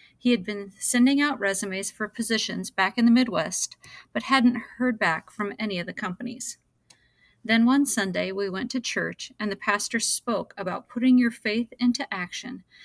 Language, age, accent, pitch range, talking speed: English, 30-49, American, 195-235 Hz, 175 wpm